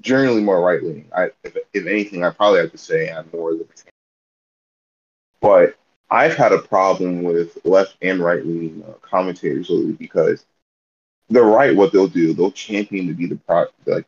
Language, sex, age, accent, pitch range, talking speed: English, male, 20-39, American, 85-110 Hz, 165 wpm